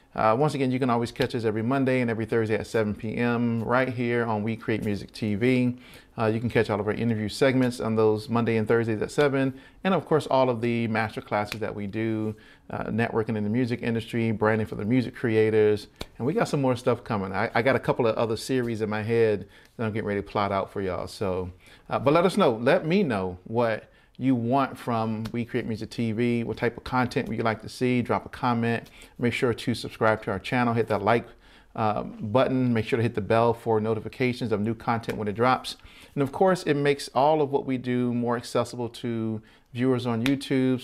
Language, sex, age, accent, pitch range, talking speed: English, male, 40-59, American, 110-130 Hz, 235 wpm